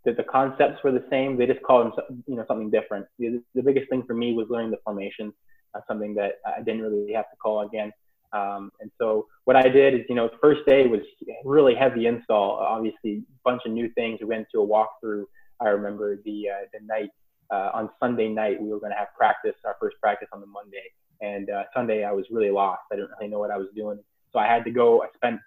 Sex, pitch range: male, 105-125 Hz